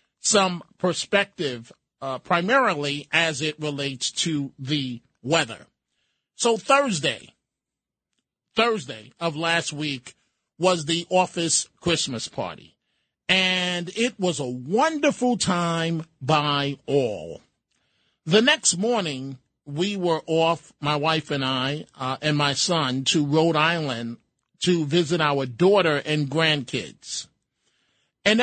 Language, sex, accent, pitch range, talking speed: English, male, American, 140-185 Hz, 110 wpm